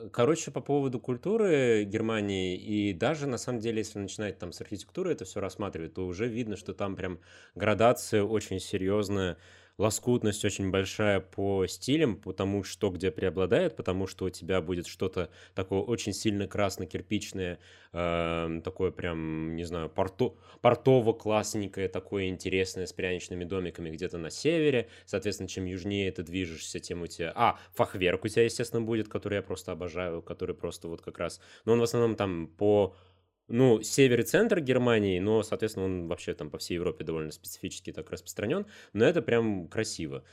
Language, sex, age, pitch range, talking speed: Russian, male, 20-39, 90-110 Hz, 165 wpm